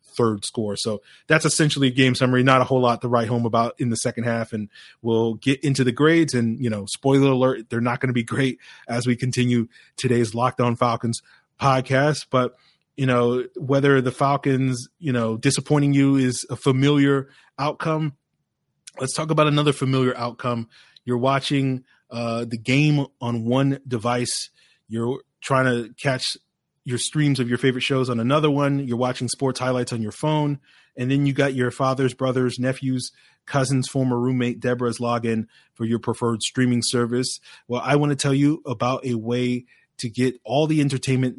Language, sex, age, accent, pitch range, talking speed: English, male, 20-39, American, 120-135 Hz, 180 wpm